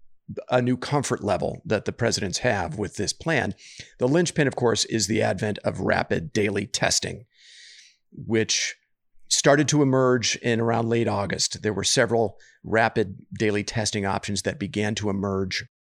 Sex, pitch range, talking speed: male, 105-130 Hz, 155 wpm